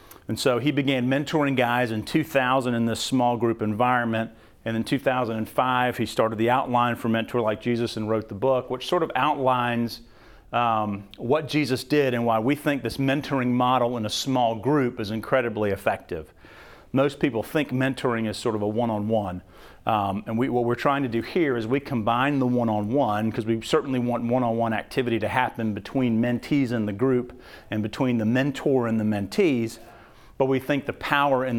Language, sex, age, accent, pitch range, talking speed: English, male, 40-59, American, 115-135 Hz, 190 wpm